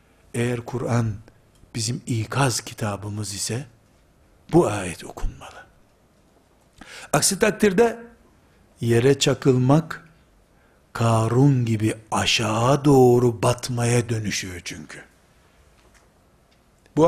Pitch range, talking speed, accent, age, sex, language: 115-180 Hz, 75 wpm, native, 60-79, male, Turkish